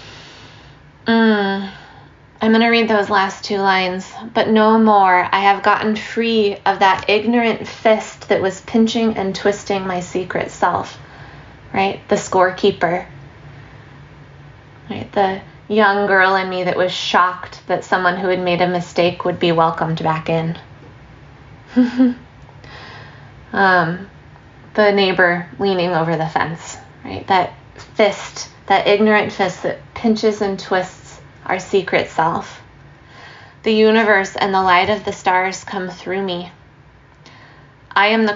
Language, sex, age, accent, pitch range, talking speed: English, female, 20-39, American, 170-200 Hz, 135 wpm